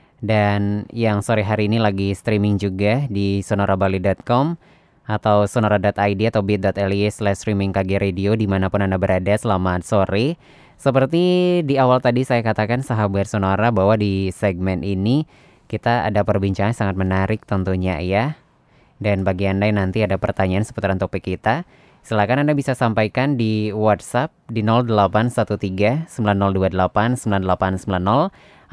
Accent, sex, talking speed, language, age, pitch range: native, female, 125 wpm, Indonesian, 20-39, 100-120 Hz